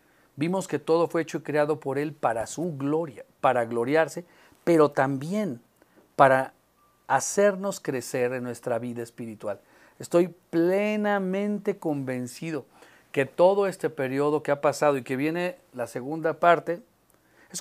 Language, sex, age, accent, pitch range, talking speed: English, male, 40-59, Mexican, 135-175 Hz, 135 wpm